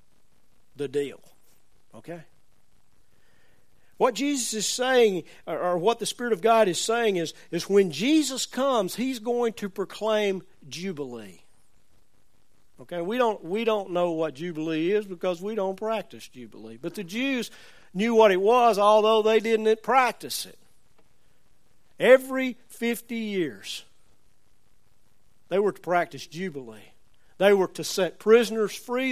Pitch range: 155-220 Hz